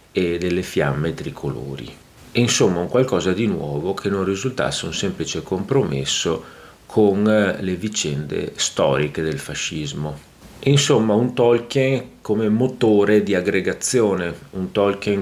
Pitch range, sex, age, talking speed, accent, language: 80-105 Hz, male, 40-59, 120 wpm, native, Italian